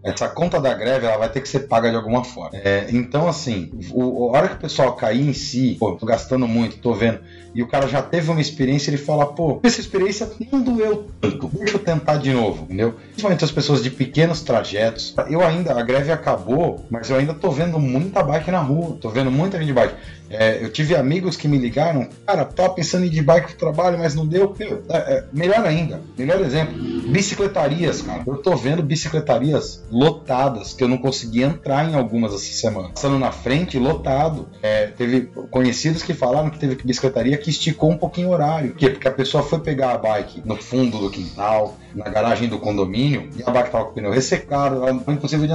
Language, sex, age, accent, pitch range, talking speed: Portuguese, male, 30-49, Brazilian, 120-165 Hz, 220 wpm